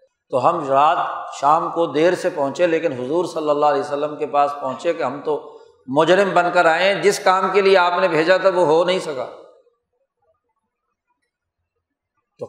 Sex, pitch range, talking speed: male, 155-215 Hz, 180 wpm